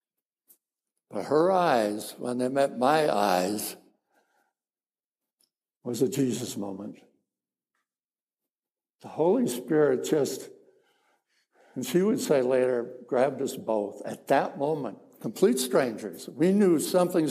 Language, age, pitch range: English, 60-79, 120-175 Hz